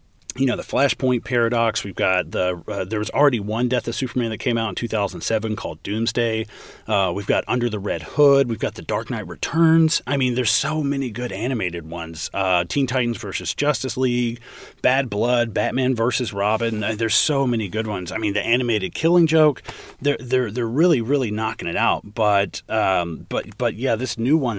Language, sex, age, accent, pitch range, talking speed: English, male, 30-49, American, 100-125 Hz, 205 wpm